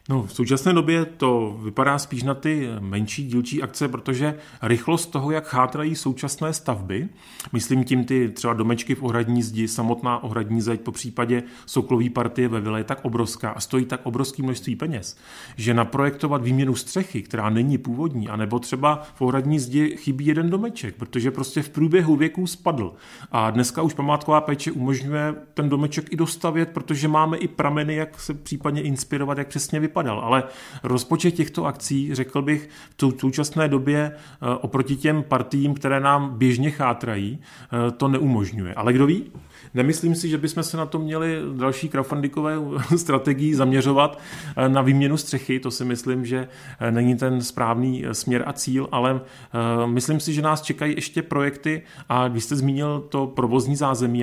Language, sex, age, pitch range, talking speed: Czech, male, 30-49, 125-150 Hz, 165 wpm